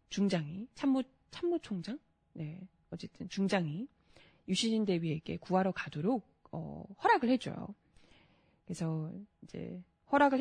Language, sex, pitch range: Korean, female, 190-265 Hz